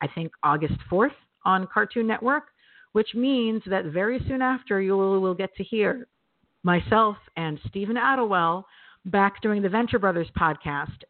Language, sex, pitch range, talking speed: English, female, 150-185 Hz, 155 wpm